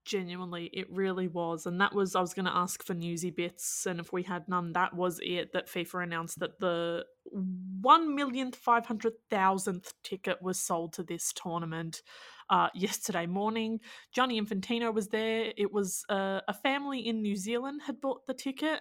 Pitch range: 180-235 Hz